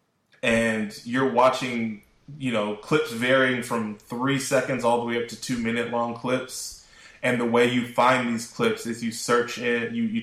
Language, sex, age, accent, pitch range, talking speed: English, male, 20-39, American, 110-130 Hz, 190 wpm